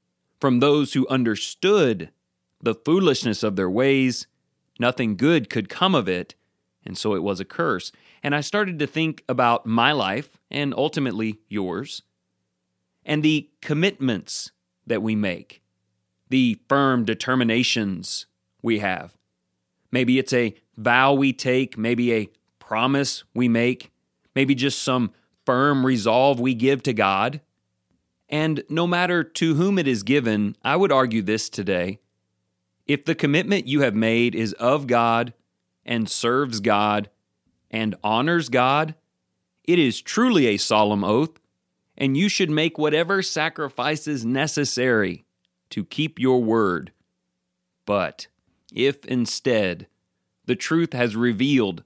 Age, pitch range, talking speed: 30-49, 110-140 Hz, 135 wpm